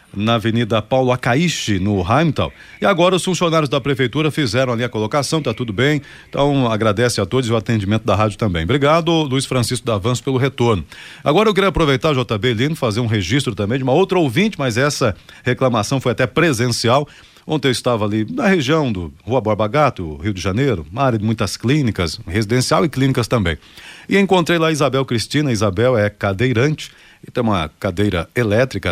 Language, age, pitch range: Portuguese, 40-59, 110-150 Hz